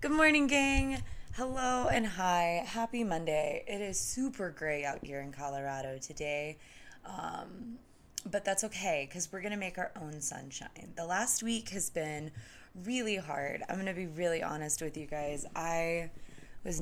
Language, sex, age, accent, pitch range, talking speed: English, female, 20-39, American, 145-220 Hz, 160 wpm